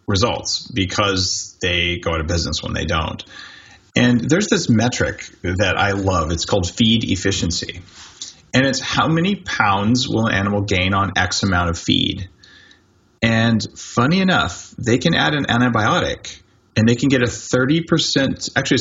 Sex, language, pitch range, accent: male, English, 95-140 Hz, American